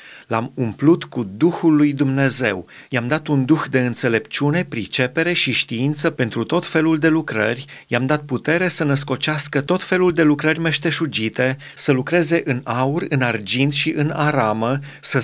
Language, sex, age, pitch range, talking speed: Romanian, male, 30-49, 130-160 Hz, 160 wpm